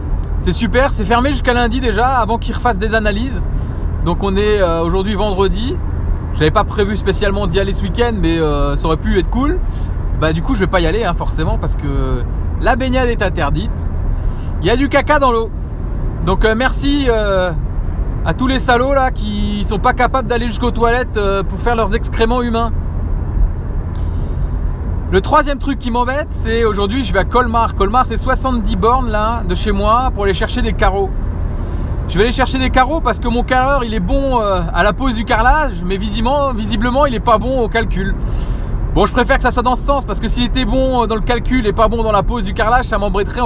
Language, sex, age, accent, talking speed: French, male, 20-39, French, 205 wpm